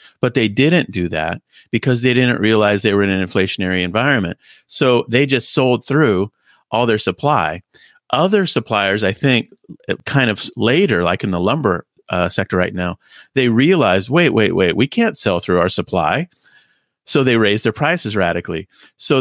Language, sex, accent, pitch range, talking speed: English, male, American, 90-130 Hz, 175 wpm